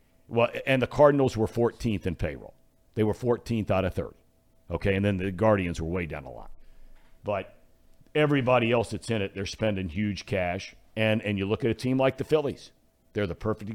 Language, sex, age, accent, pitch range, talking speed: English, male, 60-79, American, 95-130 Hz, 205 wpm